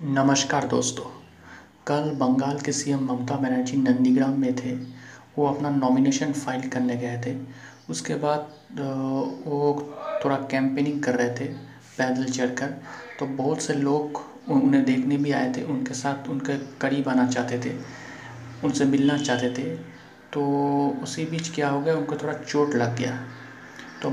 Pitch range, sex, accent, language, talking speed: 130-140 Hz, male, native, Hindi, 150 wpm